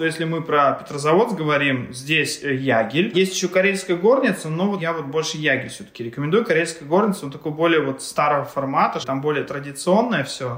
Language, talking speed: Russian, 175 wpm